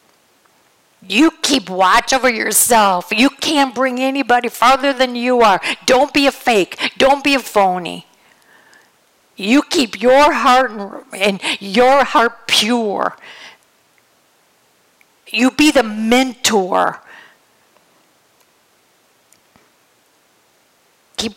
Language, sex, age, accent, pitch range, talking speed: English, female, 50-69, American, 205-275 Hz, 95 wpm